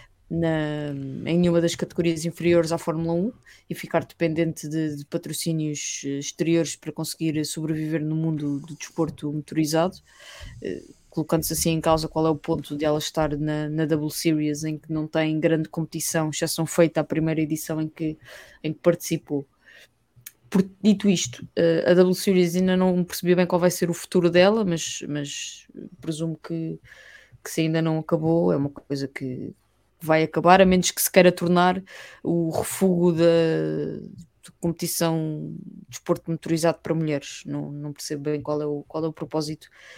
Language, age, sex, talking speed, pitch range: English, 20-39, female, 170 wpm, 150-170 Hz